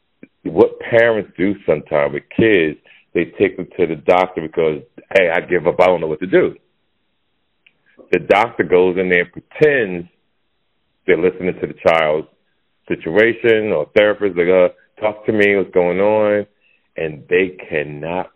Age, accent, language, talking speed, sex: 40-59, American, English, 165 wpm, male